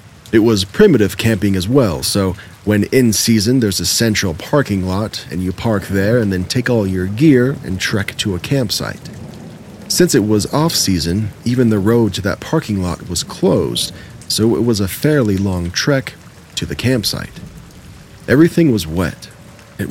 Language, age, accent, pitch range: English, 40-59, American, 95-115 Hz